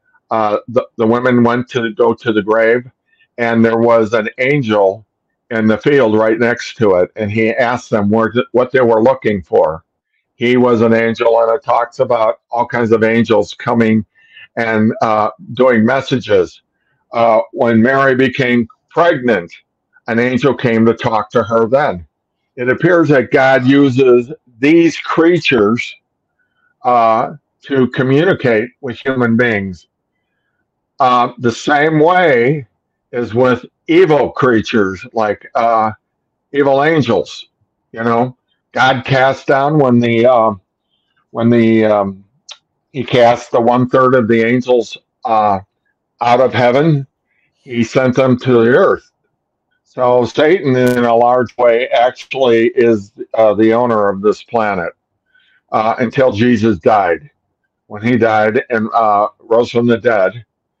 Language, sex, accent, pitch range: English, male, American, 115-130 Hz